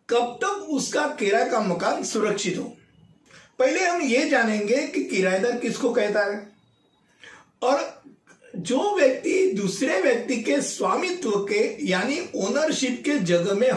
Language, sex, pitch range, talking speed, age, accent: Hindi, male, 200-295 Hz, 130 wpm, 50-69, native